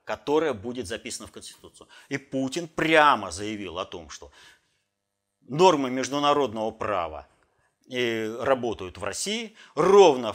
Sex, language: male, Russian